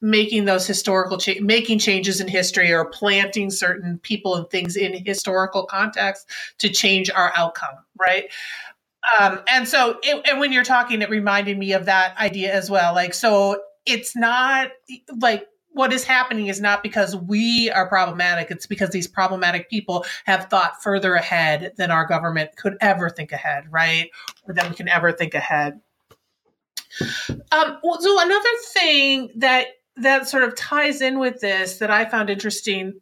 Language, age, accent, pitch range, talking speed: English, 40-59, American, 185-225 Hz, 165 wpm